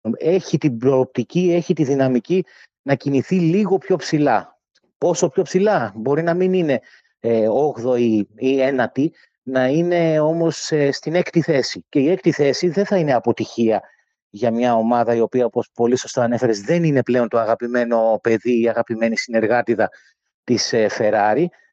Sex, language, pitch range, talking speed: male, Greek, 125-175 Hz, 165 wpm